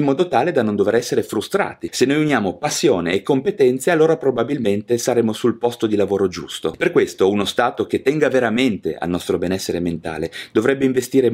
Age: 30-49